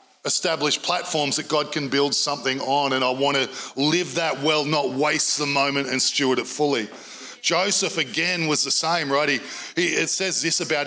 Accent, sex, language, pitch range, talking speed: Australian, male, English, 140-165 Hz, 195 wpm